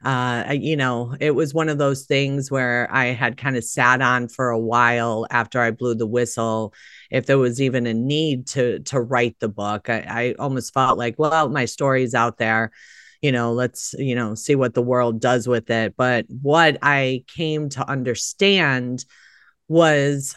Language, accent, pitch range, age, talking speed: English, American, 120-140 Hz, 30-49, 190 wpm